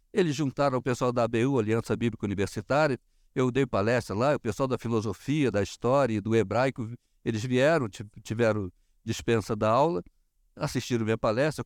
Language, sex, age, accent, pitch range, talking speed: Portuguese, male, 60-79, Brazilian, 115-170 Hz, 160 wpm